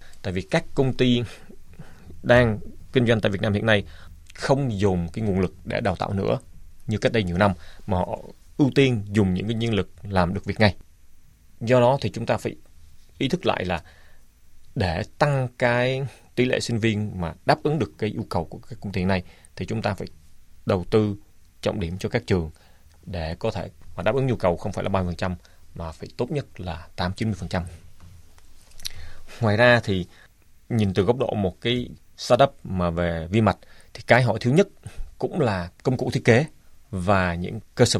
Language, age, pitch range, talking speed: Vietnamese, 20-39, 85-110 Hz, 200 wpm